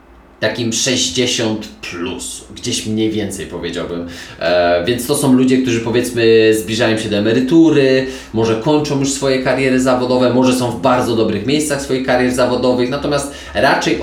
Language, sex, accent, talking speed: Polish, male, native, 150 wpm